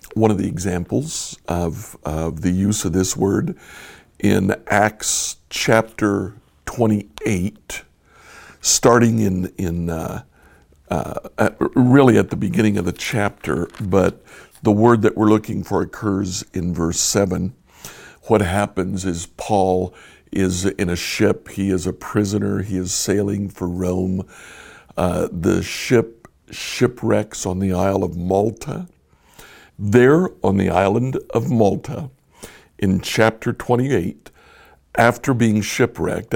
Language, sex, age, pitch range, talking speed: English, male, 60-79, 90-115 Hz, 125 wpm